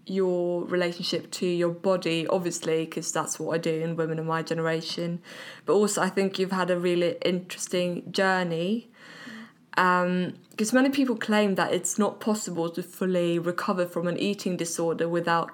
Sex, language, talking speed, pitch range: female, English, 165 wpm, 170-195 Hz